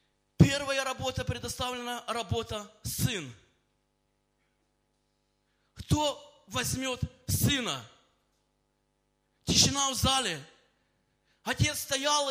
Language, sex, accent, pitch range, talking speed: Russian, male, native, 275-310 Hz, 65 wpm